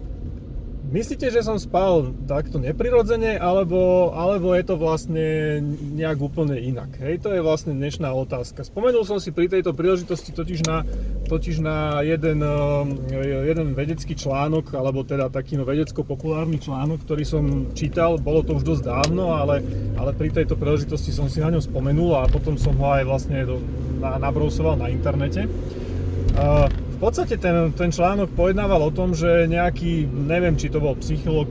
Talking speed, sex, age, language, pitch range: 160 wpm, male, 30-49, Slovak, 140-165 Hz